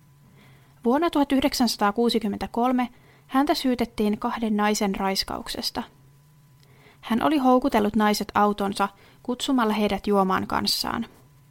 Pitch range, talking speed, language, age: 145-230 Hz, 85 wpm, Finnish, 30-49